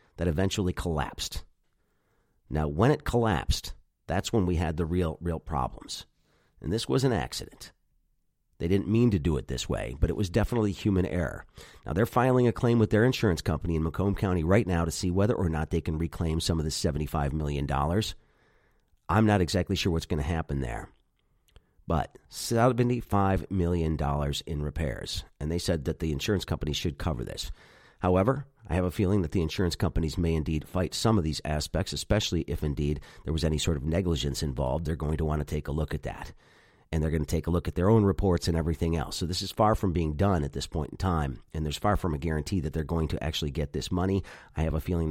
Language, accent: English, American